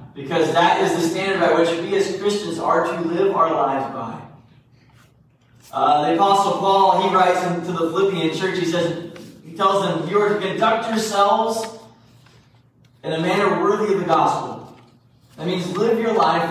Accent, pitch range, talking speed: American, 130-190 Hz, 180 wpm